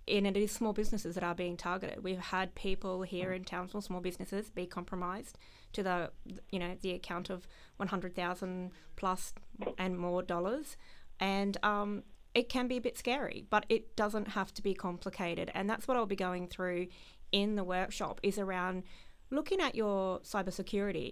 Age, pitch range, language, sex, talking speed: 30-49, 180-220 Hz, English, female, 185 wpm